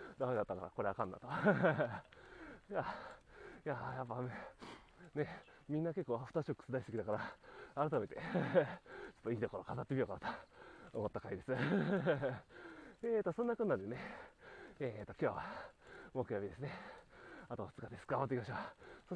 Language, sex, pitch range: Japanese, male, 120-200 Hz